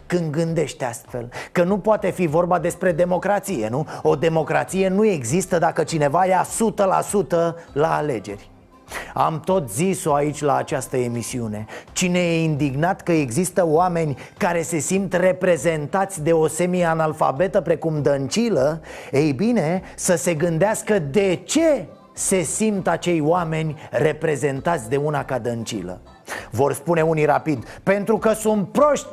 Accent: native